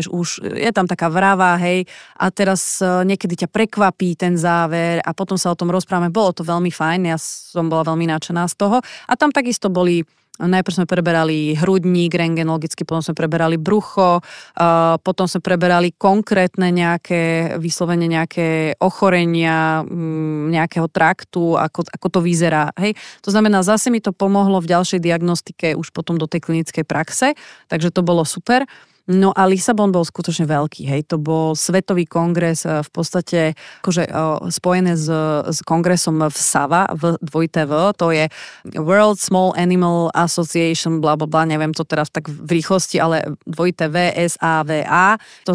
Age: 30-49